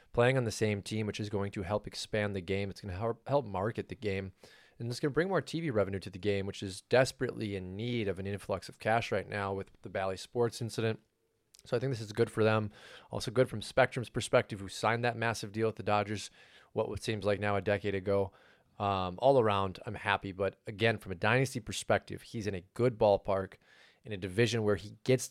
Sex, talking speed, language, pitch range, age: male, 235 wpm, English, 100-115 Hz, 20-39